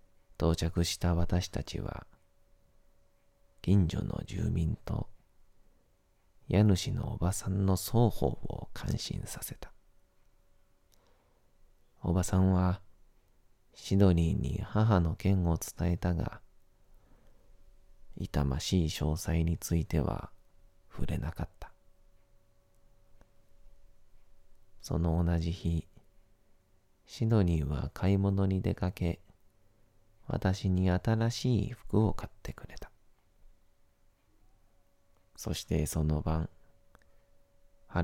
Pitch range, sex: 85-95 Hz, male